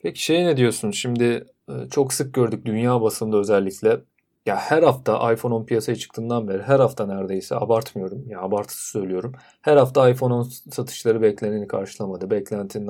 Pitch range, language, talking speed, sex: 110-140 Hz, Turkish, 165 wpm, male